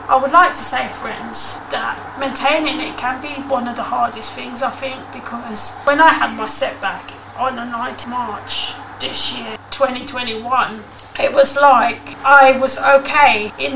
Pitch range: 245-275 Hz